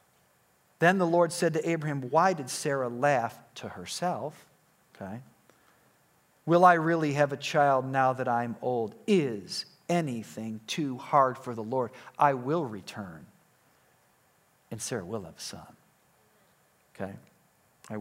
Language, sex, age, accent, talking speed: English, male, 50-69, American, 135 wpm